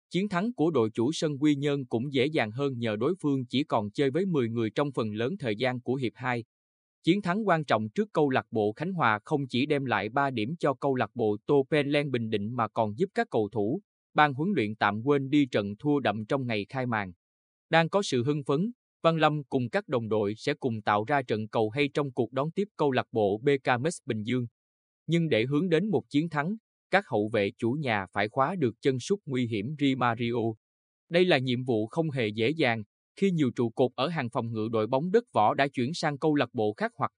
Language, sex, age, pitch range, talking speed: Vietnamese, male, 20-39, 110-150 Hz, 240 wpm